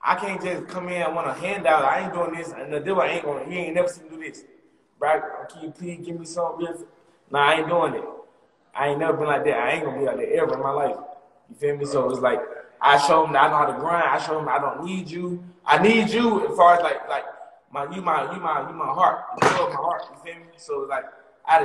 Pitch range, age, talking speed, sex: 155-215 Hz, 20-39, 300 wpm, male